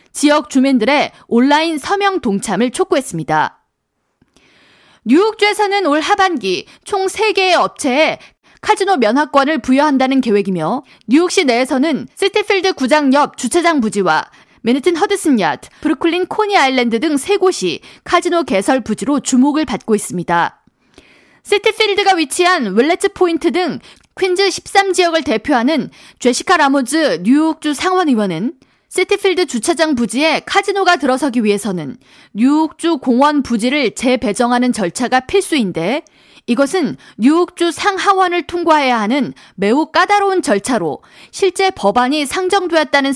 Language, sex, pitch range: Korean, female, 240-355 Hz